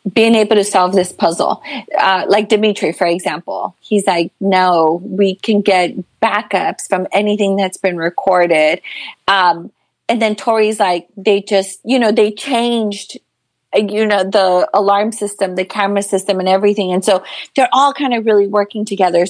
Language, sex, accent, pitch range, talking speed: English, female, American, 185-220 Hz, 165 wpm